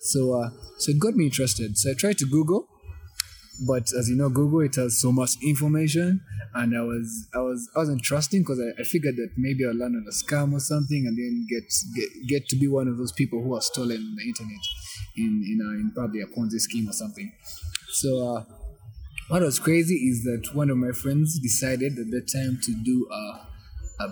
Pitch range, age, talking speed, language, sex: 115-140 Hz, 20-39, 220 wpm, English, male